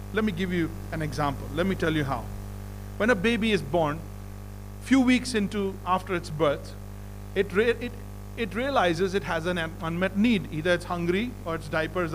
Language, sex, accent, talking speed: English, male, Indian, 195 wpm